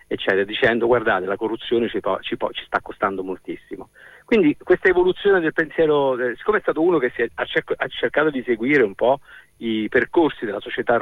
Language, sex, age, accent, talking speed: Italian, male, 50-69, native, 170 wpm